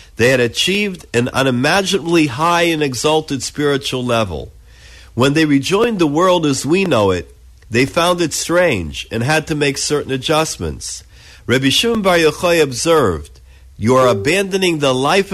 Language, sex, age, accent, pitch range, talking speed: English, male, 50-69, American, 115-165 Hz, 155 wpm